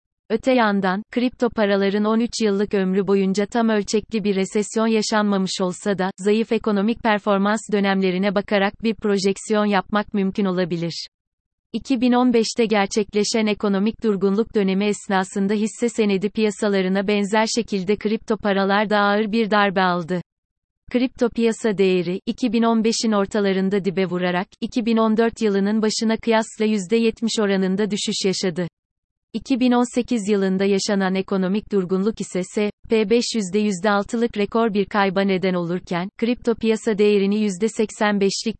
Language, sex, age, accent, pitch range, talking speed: Turkish, female, 30-49, native, 195-225 Hz, 120 wpm